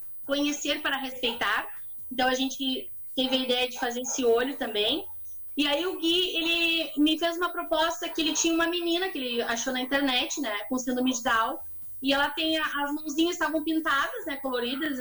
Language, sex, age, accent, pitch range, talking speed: Portuguese, female, 20-39, Brazilian, 245-315 Hz, 190 wpm